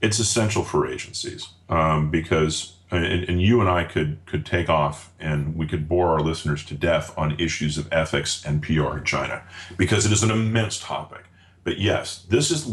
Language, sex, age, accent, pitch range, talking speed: English, male, 40-59, American, 80-105 Hz, 195 wpm